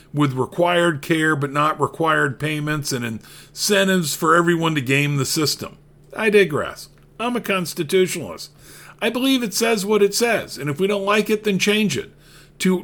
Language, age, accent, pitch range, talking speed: English, 50-69, American, 150-195 Hz, 175 wpm